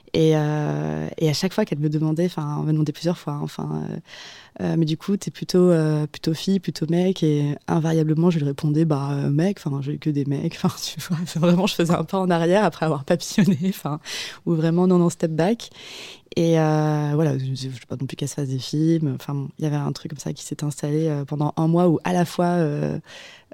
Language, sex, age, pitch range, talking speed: French, female, 20-39, 145-170 Hz, 250 wpm